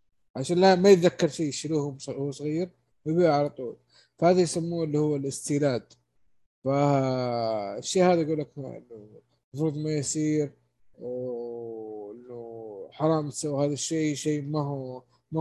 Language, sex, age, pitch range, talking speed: Arabic, male, 20-39, 135-170 Hz, 120 wpm